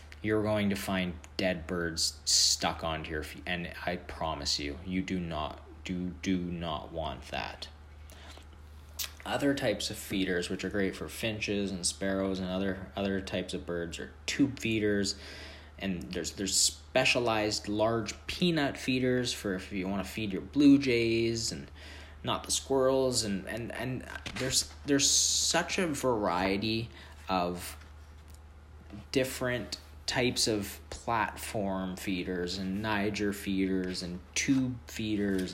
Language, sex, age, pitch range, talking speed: English, male, 20-39, 80-115 Hz, 140 wpm